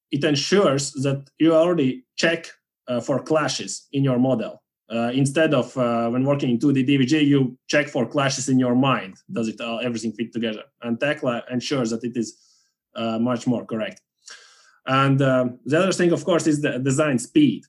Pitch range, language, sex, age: 125-155 Hz, English, male, 20-39